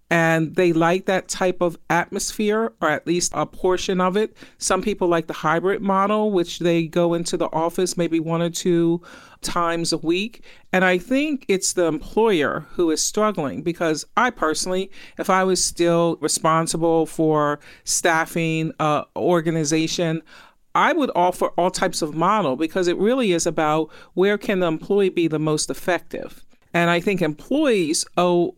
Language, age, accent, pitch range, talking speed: English, 40-59, American, 165-205 Hz, 165 wpm